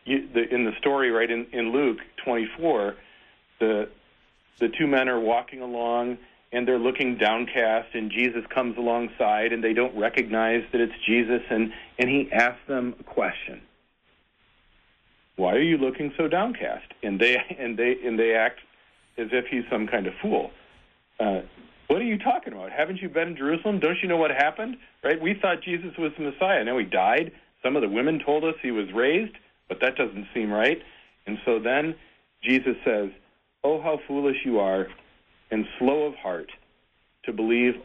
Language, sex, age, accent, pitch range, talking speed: English, male, 40-59, American, 110-135 Hz, 180 wpm